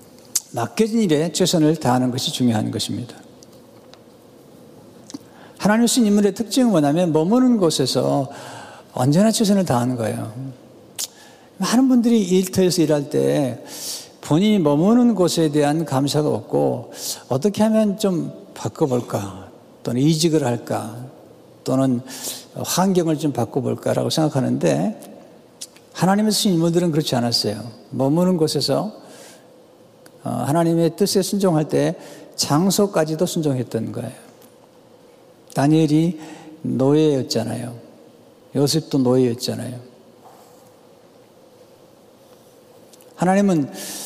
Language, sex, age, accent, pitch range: Korean, male, 60-79, native, 130-190 Hz